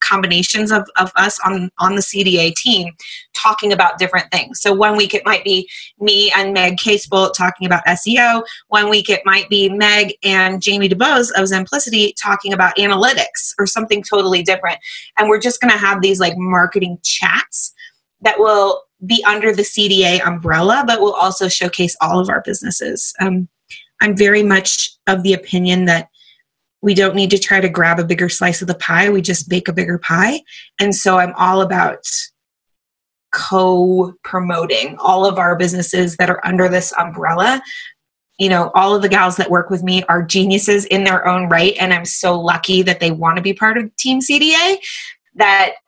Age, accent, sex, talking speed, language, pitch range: 20-39, American, female, 185 wpm, English, 180-210 Hz